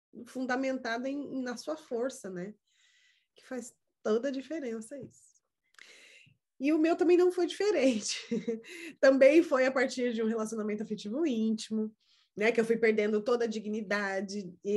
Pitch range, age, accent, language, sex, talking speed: 210-275 Hz, 20-39, Brazilian, Portuguese, female, 145 wpm